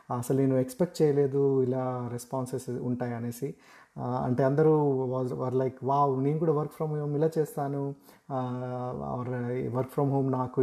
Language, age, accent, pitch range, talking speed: Telugu, 30-49, native, 125-140 Hz, 135 wpm